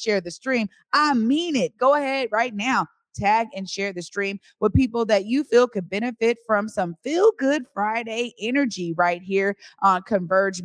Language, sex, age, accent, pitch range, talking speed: English, female, 20-39, American, 185-240 Hz, 180 wpm